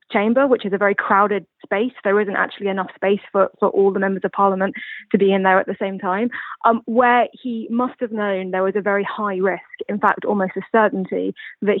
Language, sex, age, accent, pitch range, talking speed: English, female, 20-39, British, 195-230 Hz, 230 wpm